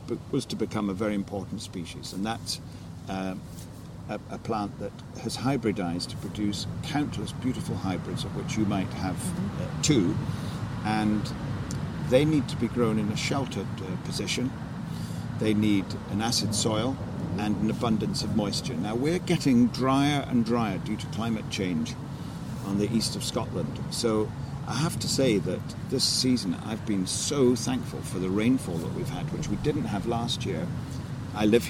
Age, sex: 50-69, male